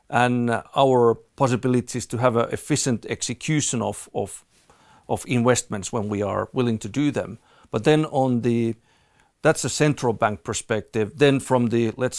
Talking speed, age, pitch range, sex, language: 160 wpm, 50-69, 110-125 Hz, male, English